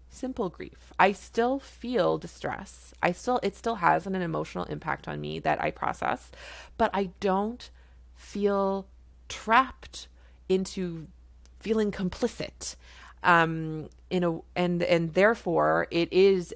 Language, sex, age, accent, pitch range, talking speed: English, female, 30-49, American, 155-200 Hz, 130 wpm